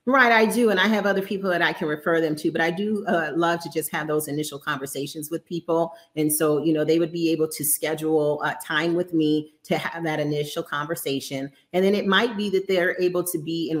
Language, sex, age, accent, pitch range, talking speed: English, female, 40-59, American, 155-180 Hz, 250 wpm